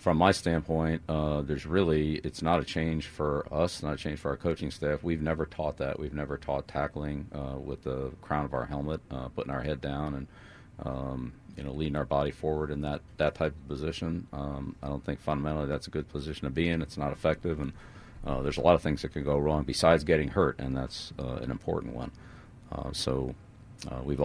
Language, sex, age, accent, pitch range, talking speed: English, male, 40-59, American, 70-80 Hz, 230 wpm